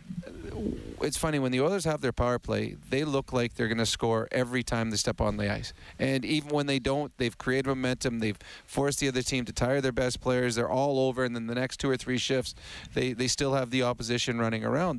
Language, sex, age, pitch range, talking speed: English, male, 40-59, 120-145 Hz, 240 wpm